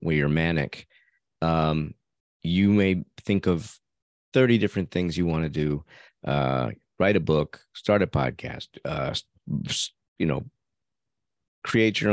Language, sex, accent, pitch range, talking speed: English, male, American, 80-100 Hz, 135 wpm